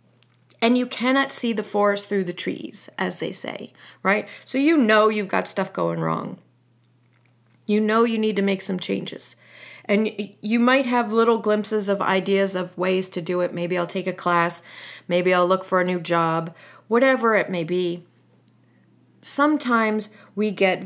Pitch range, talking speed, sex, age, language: 175-215 Hz, 175 wpm, female, 40-59, English